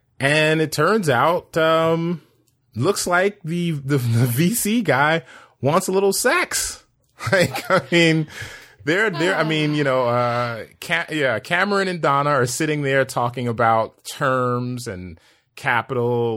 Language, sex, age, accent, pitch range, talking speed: English, male, 30-49, American, 115-160 Hz, 140 wpm